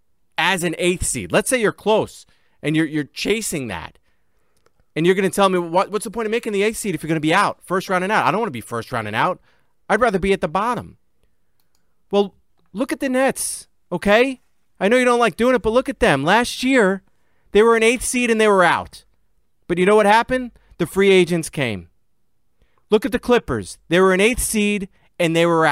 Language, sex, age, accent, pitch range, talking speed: English, male, 30-49, American, 150-210 Hz, 235 wpm